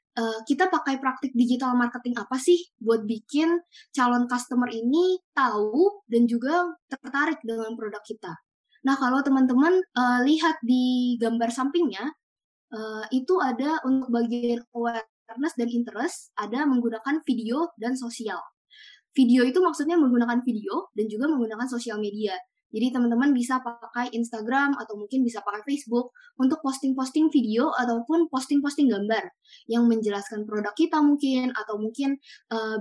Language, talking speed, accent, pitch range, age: Indonesian, 130 wpm, native, 230-285 Hz, 20-39